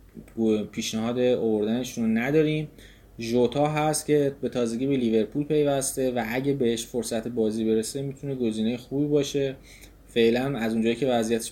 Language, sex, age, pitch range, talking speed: Persian, male, 20-39, 110-130 Hz, 135 wpm